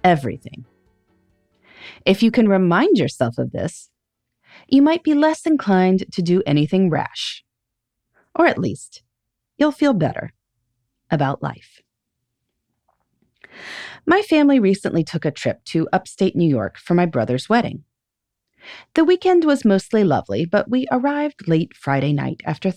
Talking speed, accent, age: 135 wpm, American, 30-49